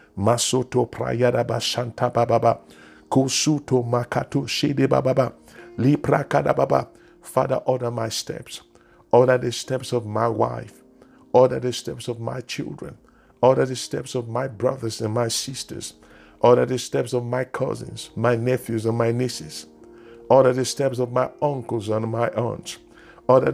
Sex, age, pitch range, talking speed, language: male, 50-69, 115-135 Hz, 115 wpm, English